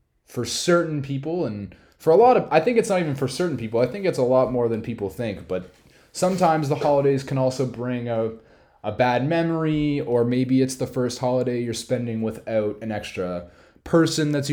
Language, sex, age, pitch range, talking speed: English, male, 20-39, 105-140 Hz, 200 wpm